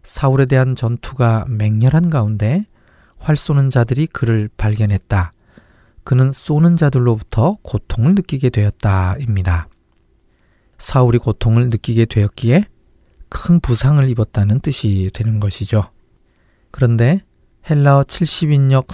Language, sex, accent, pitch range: Korean, male, native, 105-140 Hz